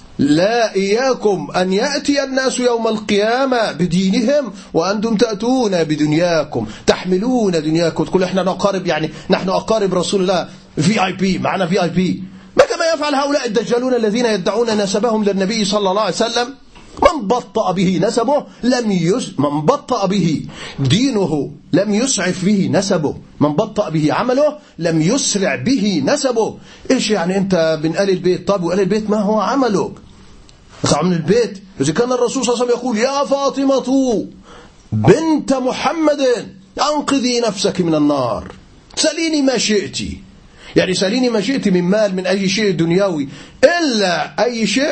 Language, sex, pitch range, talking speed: Arabic, male, 185-245 Hz, 145 wpm